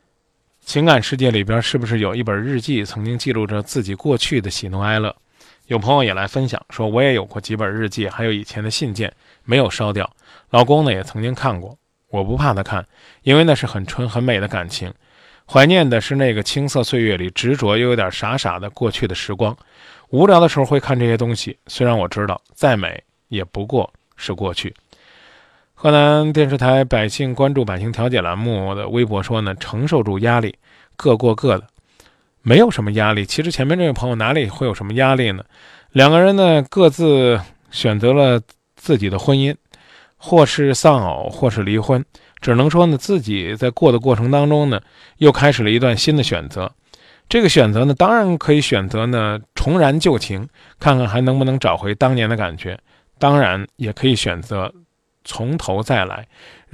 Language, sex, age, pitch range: Chinese, male, 20-39, 105-135 Hz